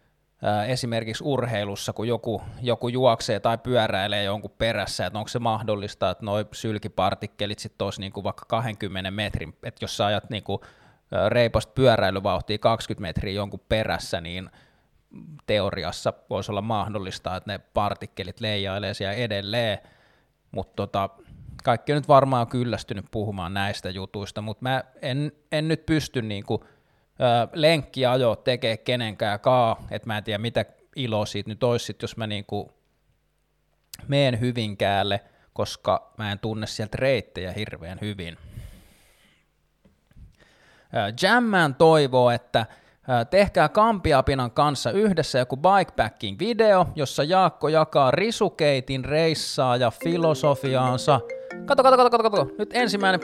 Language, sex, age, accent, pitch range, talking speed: Finnish, male, 20-39, native, 105-140 Hz, 130 wpm